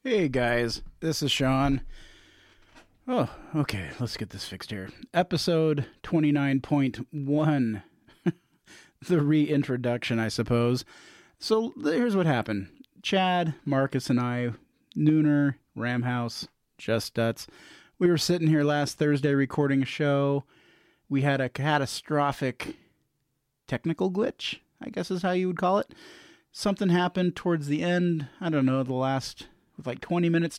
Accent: American